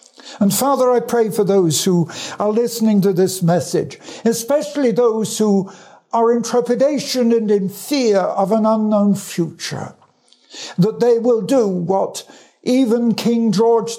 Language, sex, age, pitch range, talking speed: English, male, 60-79, 170-230 Hz, 140 wpm